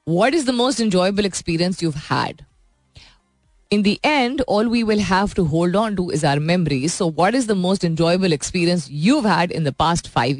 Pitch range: 150-200 Hz